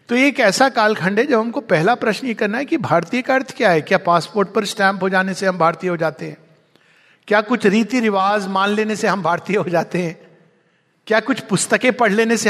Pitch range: 165-225 Hz